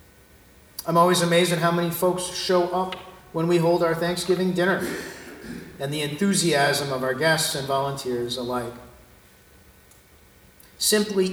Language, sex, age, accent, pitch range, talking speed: English, male, 50-69, American, 120-170 Hz, 130 wpm